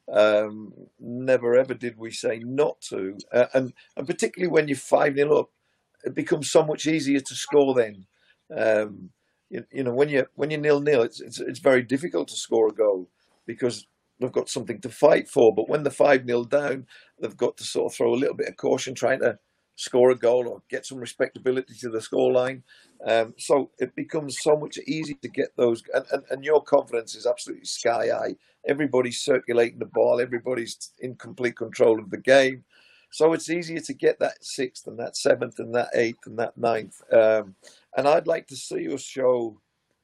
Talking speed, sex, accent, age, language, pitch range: 200 wpm, male, British, 50-69, English, 120-150 Hz